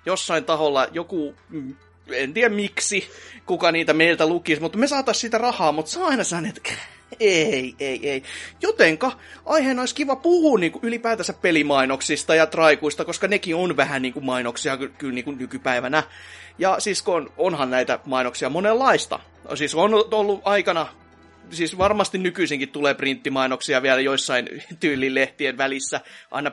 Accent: native